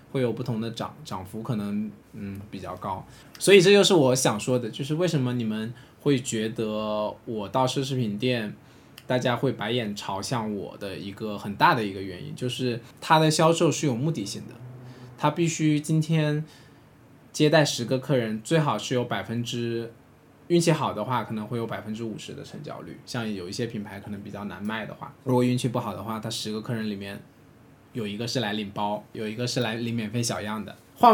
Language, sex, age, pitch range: Chinese, male, 20-39, 110-140 Hz